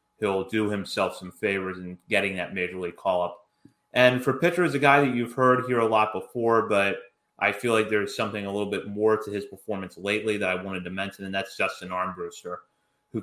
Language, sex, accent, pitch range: English, male, American, 100-125 Hz